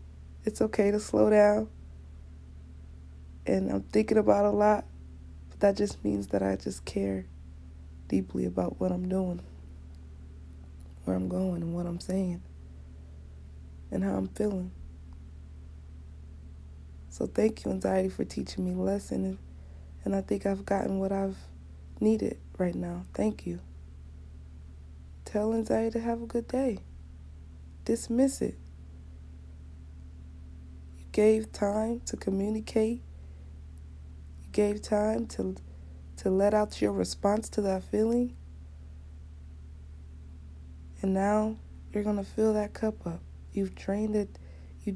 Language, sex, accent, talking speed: English, female, American, 125 wpm